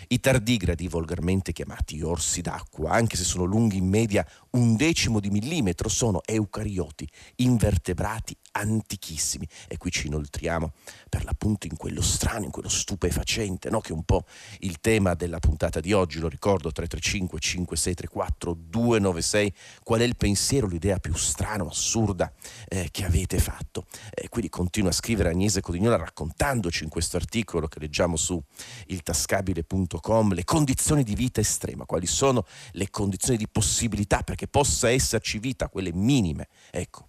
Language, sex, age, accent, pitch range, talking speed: Italian, male, 40-59, native, 85-110 Hz, 150 wpm